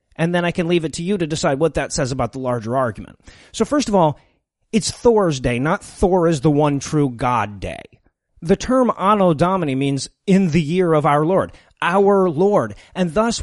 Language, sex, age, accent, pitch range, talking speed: English, male, 30-49, American, 155-200 Hz, 210 wpm